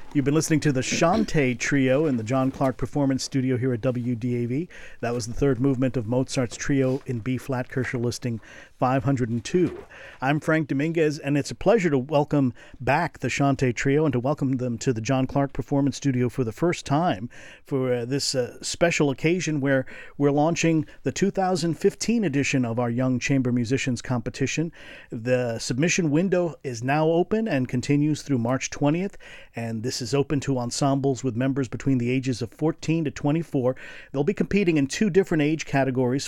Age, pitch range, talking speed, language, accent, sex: 50-69, 130-150 Hz, 180 wpm, English, American, male